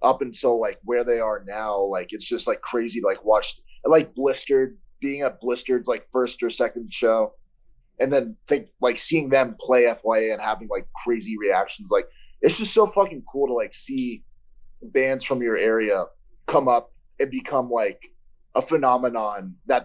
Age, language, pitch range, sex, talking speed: 30-49, English, 115-175 Hz, male, 180 wpm